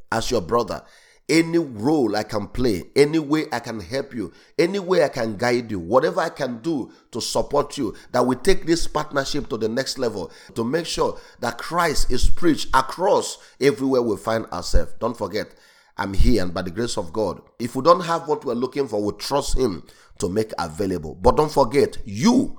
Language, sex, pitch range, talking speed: English, male, 110-150 Hz, 200 wpm